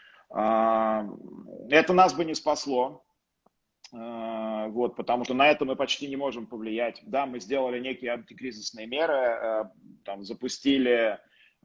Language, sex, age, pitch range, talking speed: Russian, male, 30-49, 115-135 Hz, 120 wpm